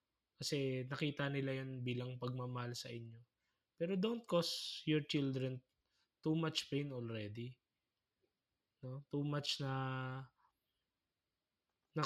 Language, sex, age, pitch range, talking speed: Filipino, male, 20-39, 130-155 Hz, 110 wpm